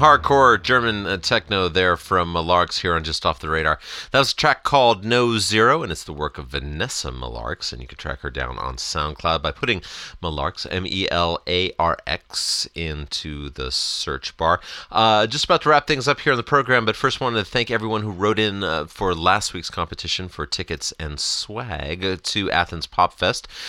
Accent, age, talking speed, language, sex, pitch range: American, 30-49, 190 wpm, English, male, 80-115 Hz